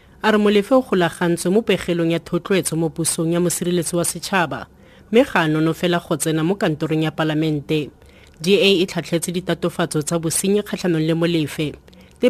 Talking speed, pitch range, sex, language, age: 150 wpm, 160-190 Hz, female, English, 30-49